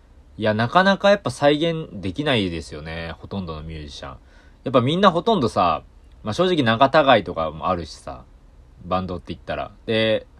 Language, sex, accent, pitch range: Japanese, male, native, 80-125 Hz